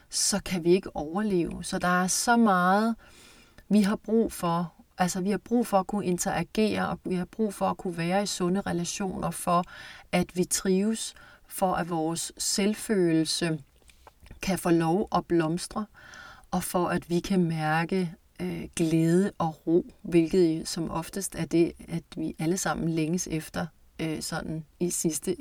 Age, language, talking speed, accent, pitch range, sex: 30-49, Danish, 170 wpm, native, 170-205 Hz, female